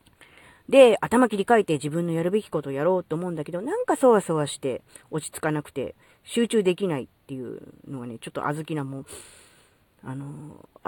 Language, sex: Japanese, female